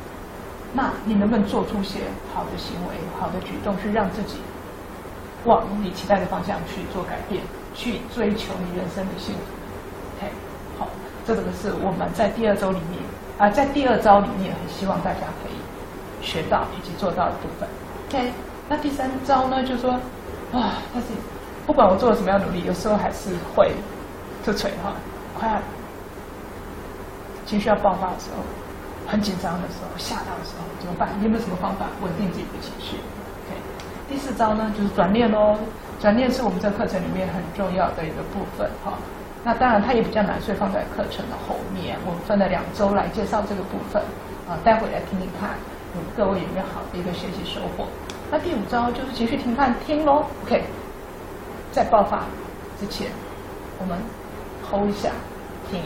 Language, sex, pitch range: Chinese, female, 195-230 Hz